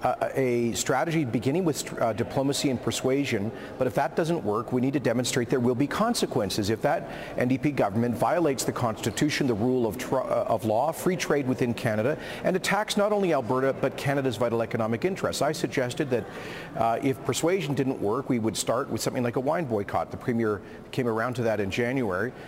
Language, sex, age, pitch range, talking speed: English, male, 40-59, 115-135 Hz, 195 wpm